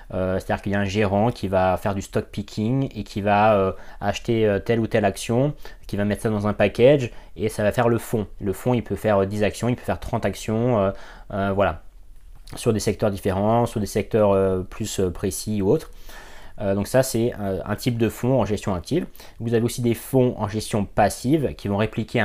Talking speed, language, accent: 225 wpm, French, French